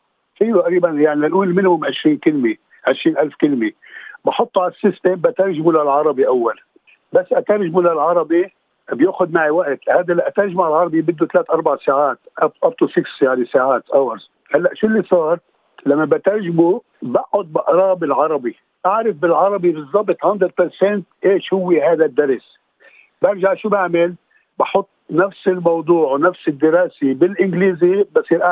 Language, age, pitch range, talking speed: Arabic, 60-79, 160-210 Hz, 130 wpm